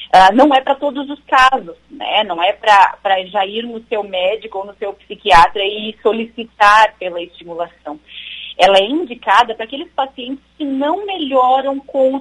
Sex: female